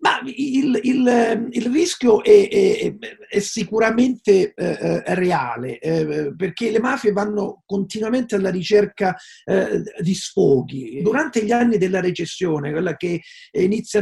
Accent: native